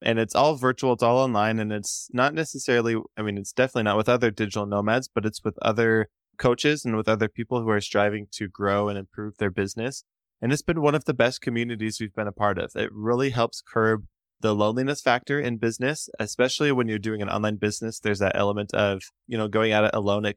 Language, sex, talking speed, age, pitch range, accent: English, male, 230 wpm, 20-39, 105-125 Hz, American